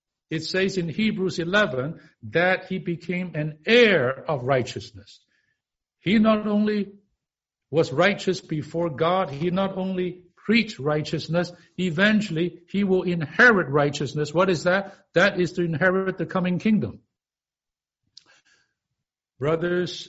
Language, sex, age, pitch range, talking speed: English, male, 60-79, 150-185 Hz, 120 wpm